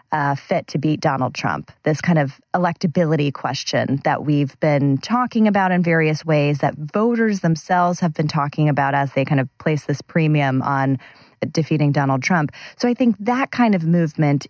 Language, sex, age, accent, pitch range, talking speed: English, female, 30-49, American, 145-185 Hz, 180 wpm